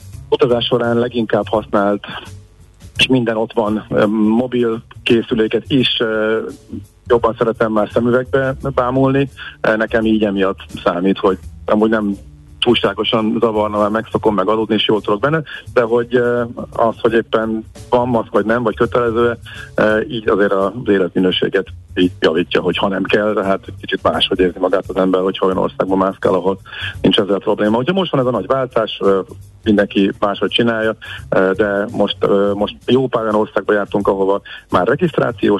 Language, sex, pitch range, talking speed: Hungarian, male, 100-125 Hz, 150 wpm